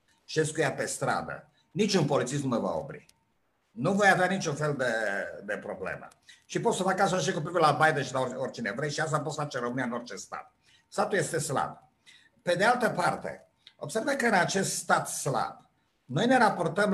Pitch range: 140-180 Hz